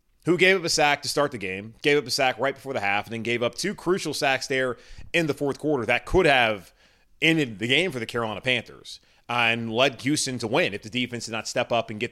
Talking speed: 265 wpm